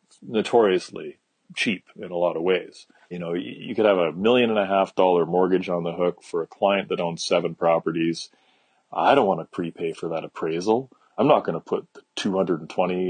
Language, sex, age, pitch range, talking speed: English, male, 30-49, 85-95 Hz, 210 wpm